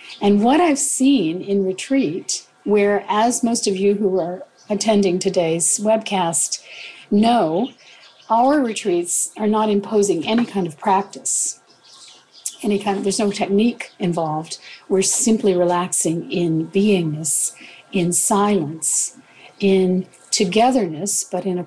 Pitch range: 180-225 Hz